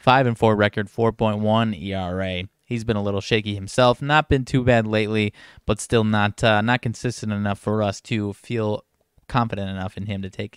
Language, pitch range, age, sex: English, 105-120 Hz, 20-39, male